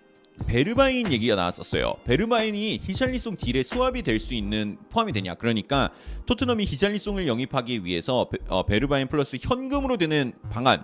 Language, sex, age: Korean, male, 30-49